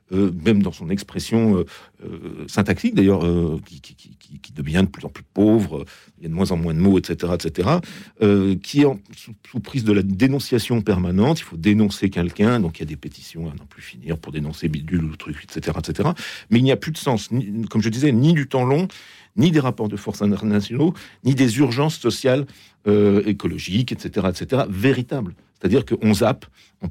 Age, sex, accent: 50-69, male, French